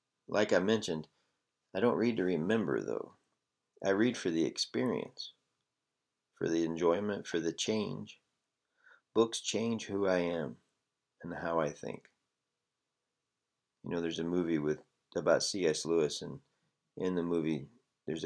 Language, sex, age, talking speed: English, male, 40-59, 140 wpm